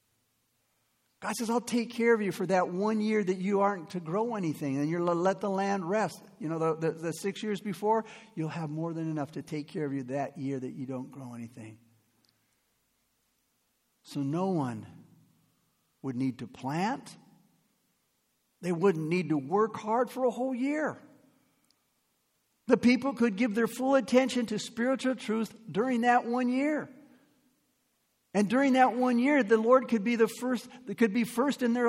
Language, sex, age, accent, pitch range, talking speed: English, male, 50-69, American, 150-235 Hz, 180 wpm